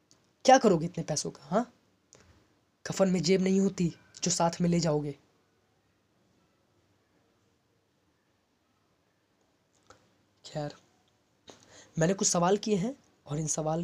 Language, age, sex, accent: Hindi, 20-39, female, native